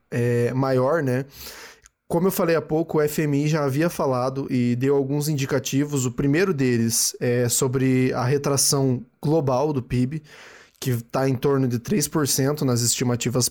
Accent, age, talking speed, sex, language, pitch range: Brazilian, 20-39, 150 wpm, male, Portuguese, 130-160 Hz